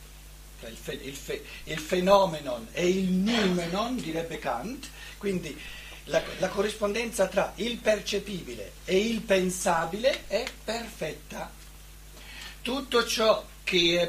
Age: 60-79